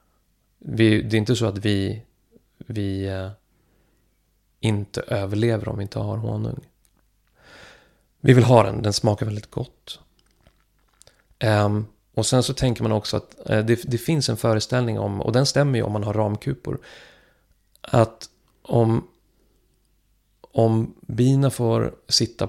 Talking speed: 140 wpm